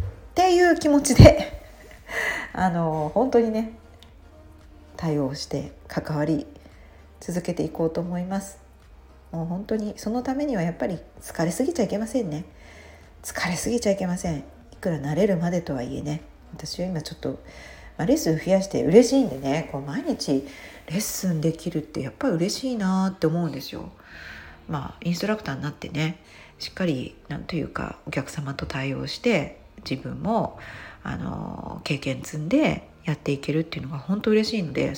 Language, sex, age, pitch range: Japanese, female, 40-59, 140-200 Hz